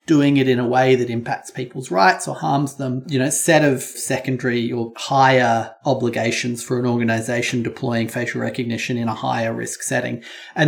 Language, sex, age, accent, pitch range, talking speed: English, male, 30-49, Australian, 120-145 Hz, 180 wpm